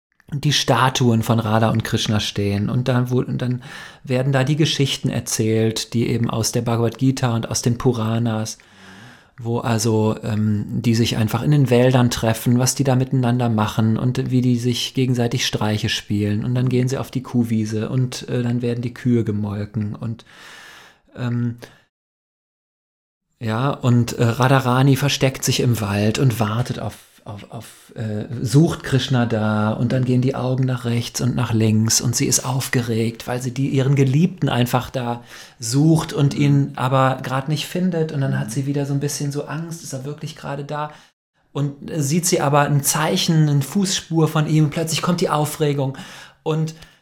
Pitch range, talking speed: 115-145 Hz, 175 wpm